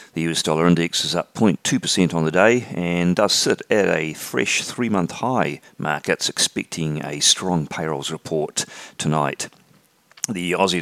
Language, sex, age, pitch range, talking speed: English, male, 40-59, 80-100 Hz, 155 wpm